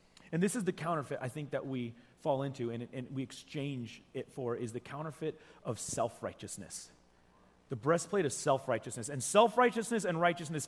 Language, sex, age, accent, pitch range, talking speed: English, male, 30-49, American, 125-190 Hz, 170 wpm